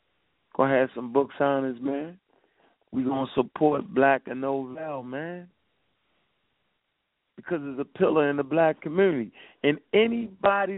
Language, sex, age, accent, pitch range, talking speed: English, male, 40-59, American, 140-200 Hz, 130 wpm